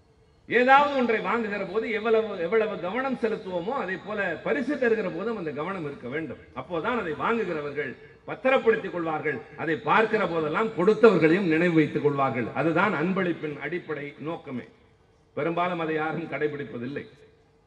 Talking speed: 120 wpm